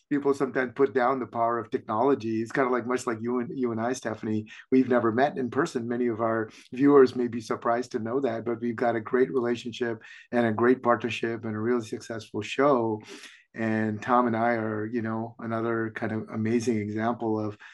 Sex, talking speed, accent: male, 215 wpm, American